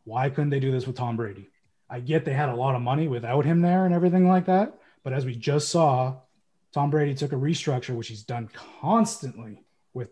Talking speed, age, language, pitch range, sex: 225 wpm, 20-39, English, 125-155 Hz, male